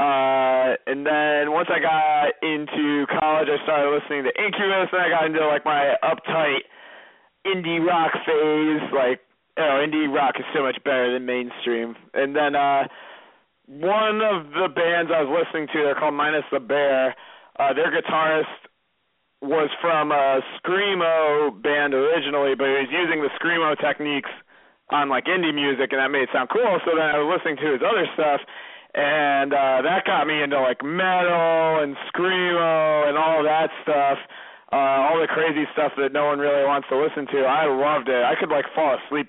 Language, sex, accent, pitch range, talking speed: English, male, American, 135-160 Hz, 185 wpm